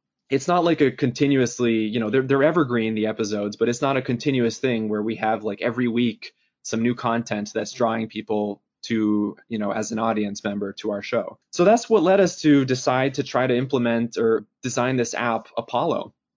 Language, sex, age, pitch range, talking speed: English, male, 20-39, 110-130 Hz, 205 wpm